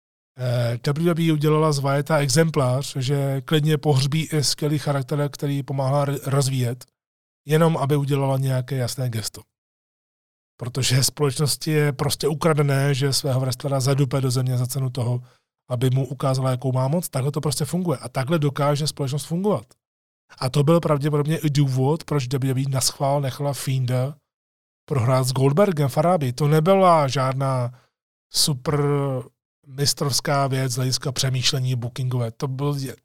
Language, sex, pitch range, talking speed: Czech, male, 130-150 Hz, 135 wpm